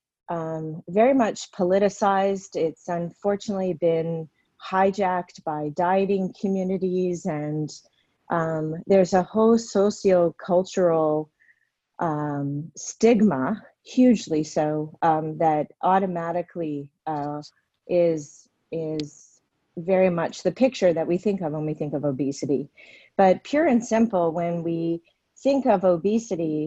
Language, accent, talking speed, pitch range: English, American, 110 wpm, 165-205 Hz